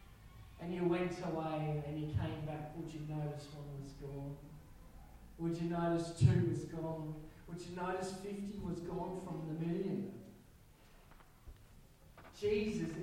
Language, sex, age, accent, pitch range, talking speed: English, male, 40-59, Australian, 180-250 Hz, 140 wpm